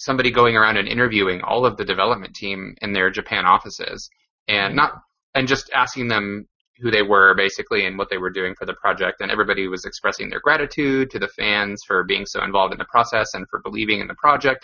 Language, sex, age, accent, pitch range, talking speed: English, male, 20-39, American, 100-130 Hz, 220 wpm